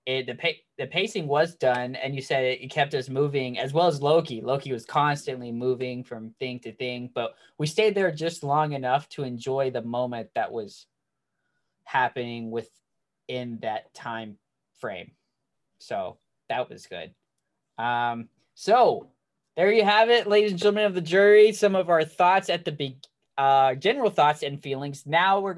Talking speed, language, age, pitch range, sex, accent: 175 wpm, English, 20-39, 125-165 Hz, male, American